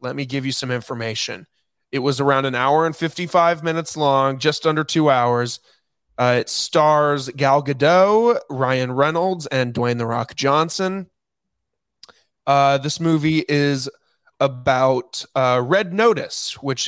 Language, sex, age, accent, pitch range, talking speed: English, male, 20-39, American, 130-155 Hz, 140 wpm